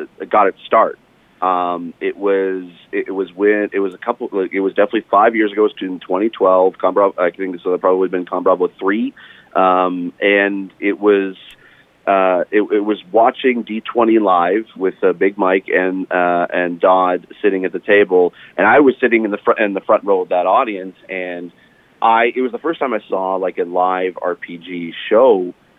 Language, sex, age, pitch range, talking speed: English, male, 30-49, 95-115 Hz, 200 wpm